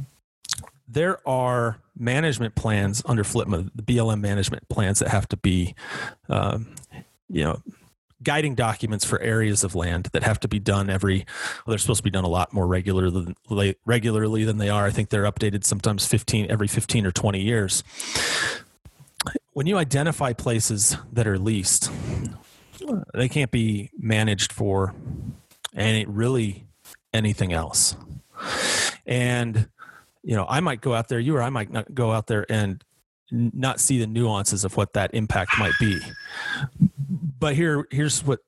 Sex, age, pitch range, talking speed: male, 30-49, 100-125 Hz, 160 wpm